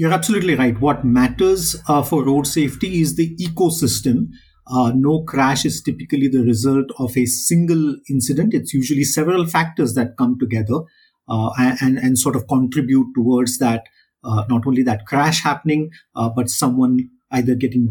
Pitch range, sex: 125-155 Hz, male